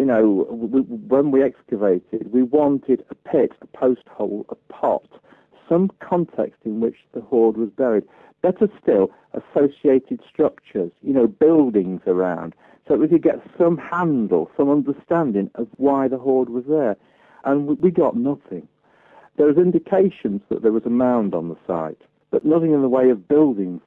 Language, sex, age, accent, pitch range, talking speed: English, male, 50-69, British, 110-155 Hz, 170 wpm